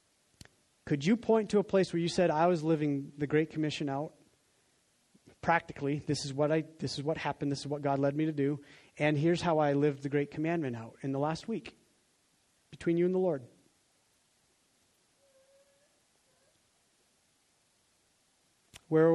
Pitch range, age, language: 145-185 Hz, 30-49, English